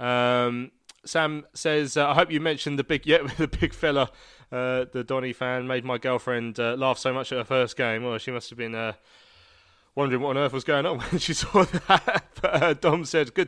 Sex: male